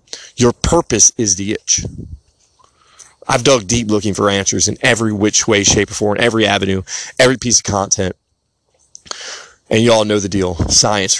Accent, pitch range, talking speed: American, 100-135 Hz, 165 wpm